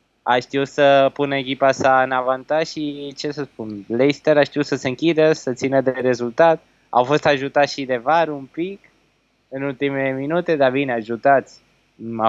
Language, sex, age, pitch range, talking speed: Romanian, male, 20-39, 125-150 Hz, 180 wpm